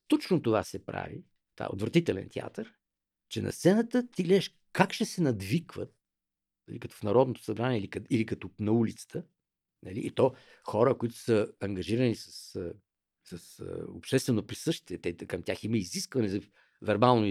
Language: Bulgarian